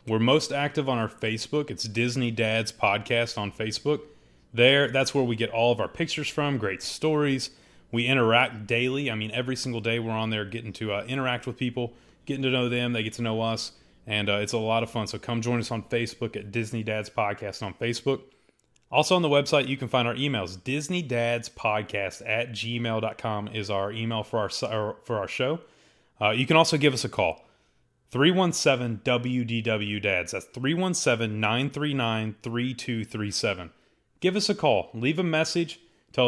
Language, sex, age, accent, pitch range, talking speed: English, male, 30-49, American, 110-135 Hz, 175 wpm